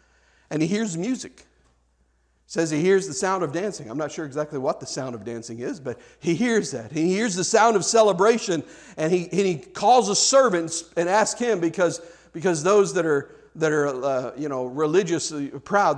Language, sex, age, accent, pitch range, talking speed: English, male, 50-69, American, 135-185 Hz, 200 wpm